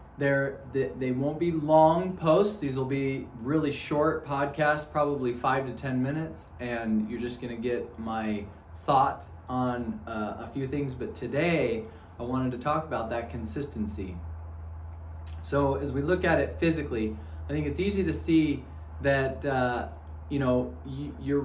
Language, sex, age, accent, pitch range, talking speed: English, male, 20-39, American, 95-145 Hz, 160 wpm